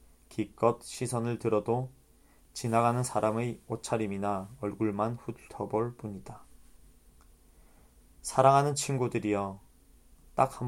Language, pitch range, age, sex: Korean, 90-120 Hz, 20-39, male